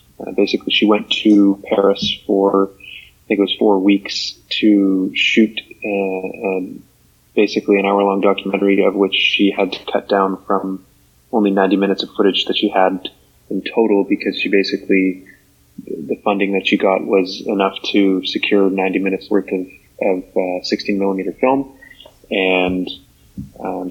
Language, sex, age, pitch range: English, male, 20-39, 95-105 Hz